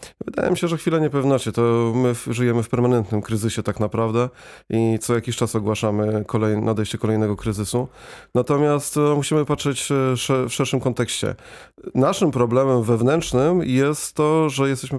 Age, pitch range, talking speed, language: 30-49, 115-140 Hz, 145 wpm, Polish